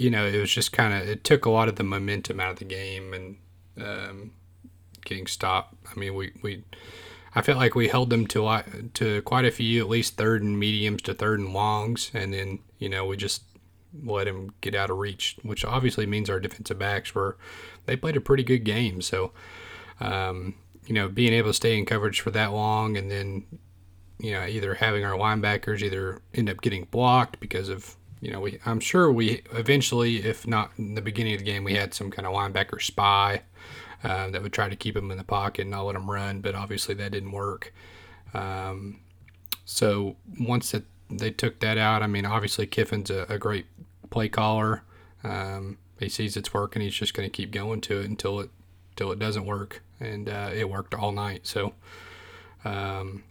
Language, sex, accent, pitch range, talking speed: English, male, American, 95-110 Hz, 210 wpm